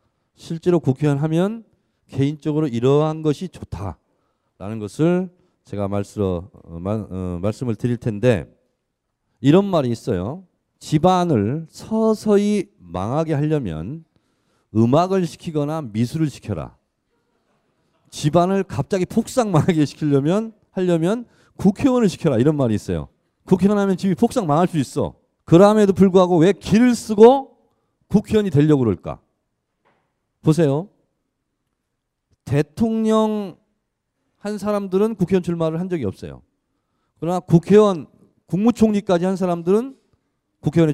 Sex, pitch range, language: male, 130-210 Hz, Korean